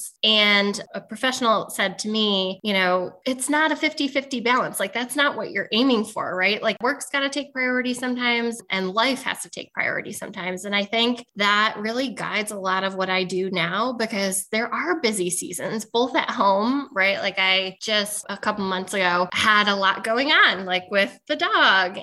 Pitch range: 190-245 Hz